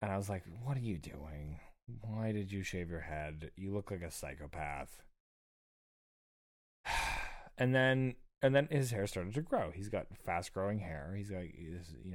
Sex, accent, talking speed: male, American, 175 wpm